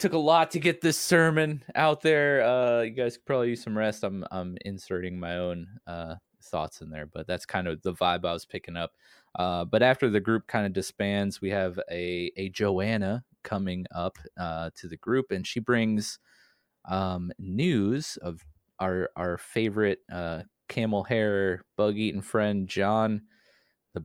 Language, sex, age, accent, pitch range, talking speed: English, male, 20-39, American, 85-110 Hz, 180 wpm